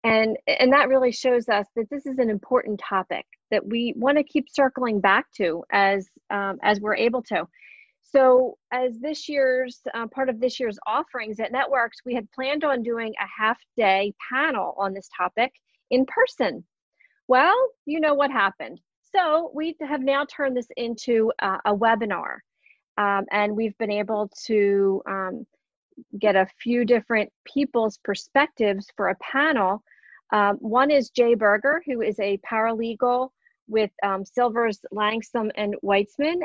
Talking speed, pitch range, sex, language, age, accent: 160 wpm, 210-260 Hz, female, English, 40-59, American